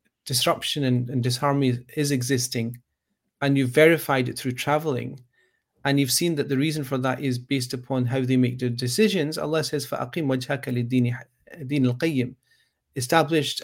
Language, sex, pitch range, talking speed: English, male, 125-150 Hz, 135 wpm